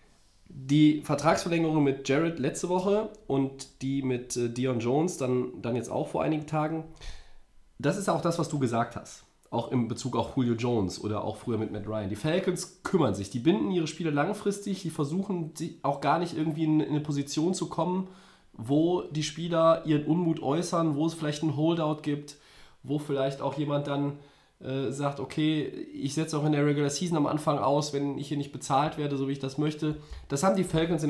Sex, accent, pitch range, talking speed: male, German, 125-160 Hz, 200 wpm